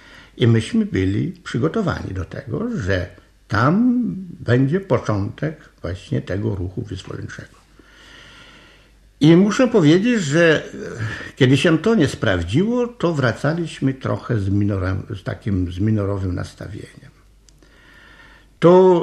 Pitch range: 105-170 Hz